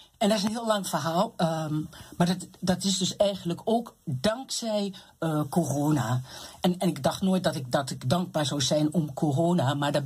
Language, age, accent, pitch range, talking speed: Dutch, 60-79, Dutch, 135-180 Hz, 205 wpm